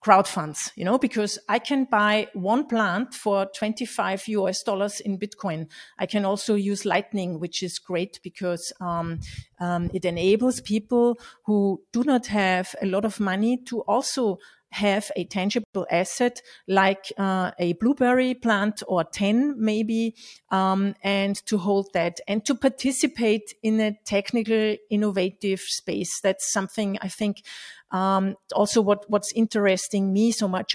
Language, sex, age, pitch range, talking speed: English, female, 40-59, 190-215 Hz, 150 wpm